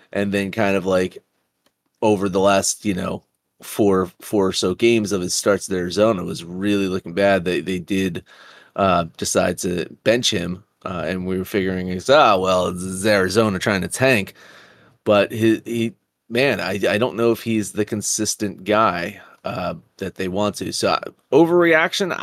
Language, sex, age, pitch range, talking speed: English, male, 30-49, 95-115 Hz, 180 wpm